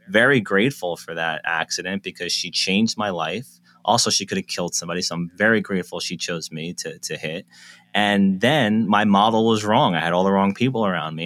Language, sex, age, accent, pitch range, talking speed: English, male, 30-49, American, 90-120 Hz, 215 wpm